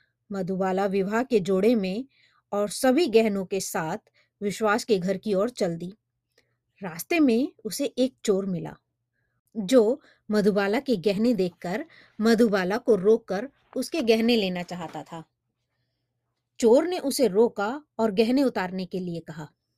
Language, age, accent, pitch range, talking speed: Hindi, 20-39, native, 185-255 Hz, 140 wpm